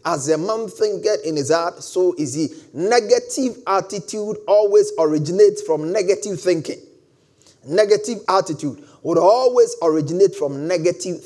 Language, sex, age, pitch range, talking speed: English, male, 30-49, 170-285 Hz, 130 wpm